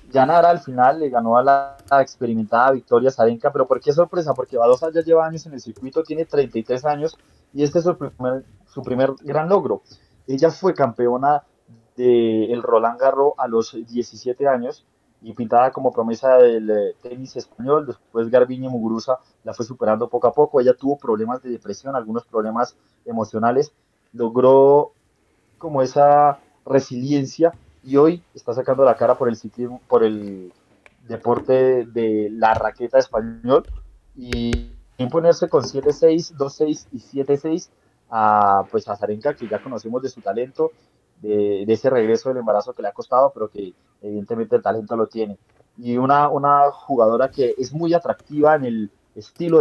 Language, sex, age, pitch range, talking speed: Spanish, male, 20-39, 110-145 Hz, 165 wpm